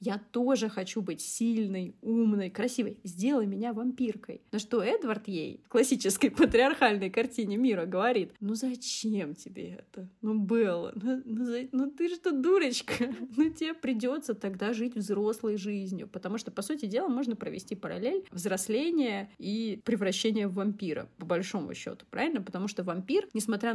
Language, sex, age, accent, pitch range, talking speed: Russian, female, 20-39, native, 195-240 Hz, 155 wpm